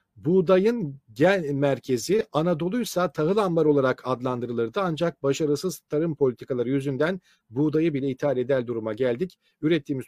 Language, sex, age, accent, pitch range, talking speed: Turkish, male, 50-69, native, 140-180 Hz, 125 wpm